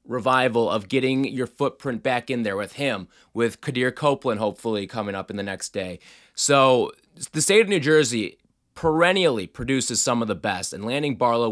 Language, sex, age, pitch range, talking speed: English, male, 20-39, 125-200 Hz, 180 wpm